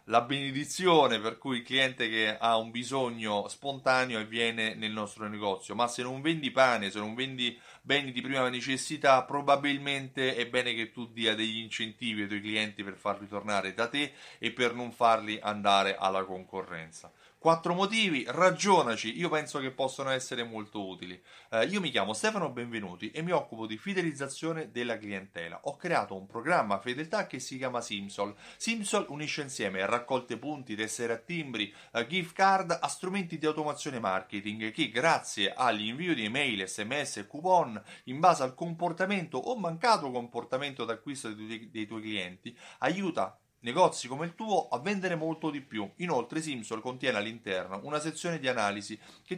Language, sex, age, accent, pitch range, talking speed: Italian, male, 30-49, native, 110-155 Hz, 170 wpm